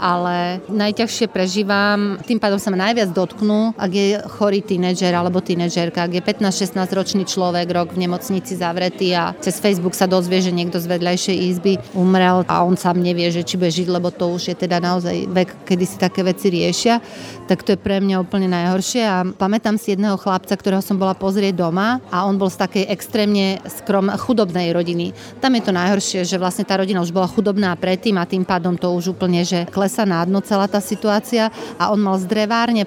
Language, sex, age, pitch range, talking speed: Slovak, female, 30-49, 180-200 Hz, 200 wpm